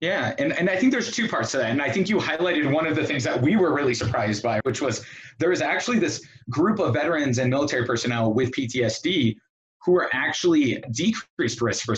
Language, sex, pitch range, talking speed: English, male, 115-155 Hz, 225 wpm